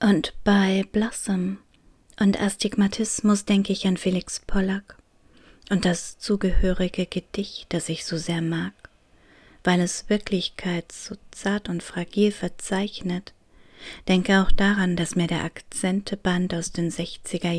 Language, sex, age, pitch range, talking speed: German, female, 30-49, 165-195 Hz, 125 wpm